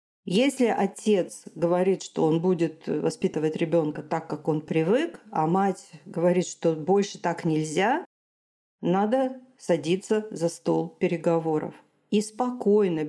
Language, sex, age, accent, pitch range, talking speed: Russian, female, 40-59, native, 160-200 Hz, 120 wpm